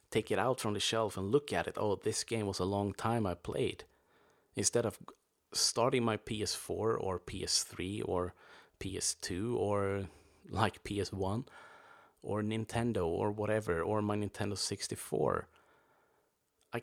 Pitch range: 95-120 Hz